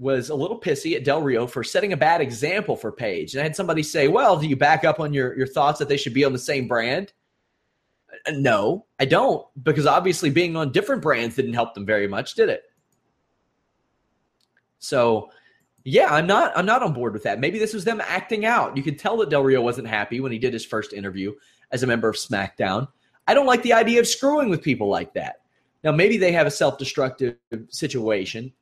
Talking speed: 220 wpm